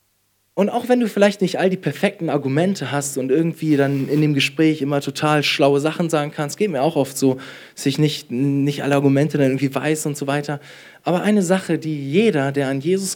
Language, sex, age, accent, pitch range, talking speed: German, male, 20-39, German, 140-205 Hz, 225 wpm